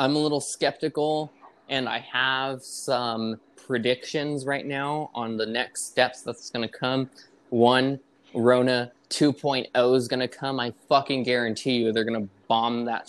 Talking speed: 160 wpm